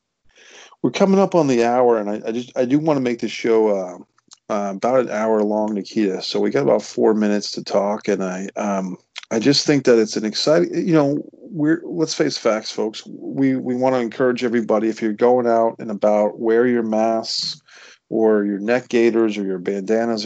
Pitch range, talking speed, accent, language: 105-125 Hz, 210 wpm, American, English